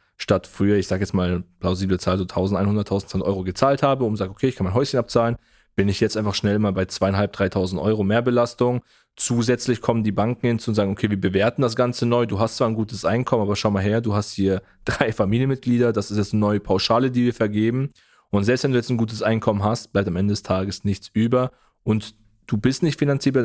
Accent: German